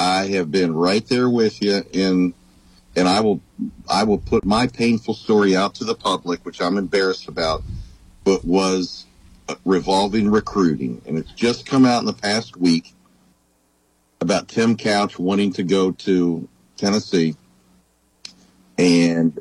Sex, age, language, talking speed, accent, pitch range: male, 50-69, English, 140 wpm, American, 85-110 Hz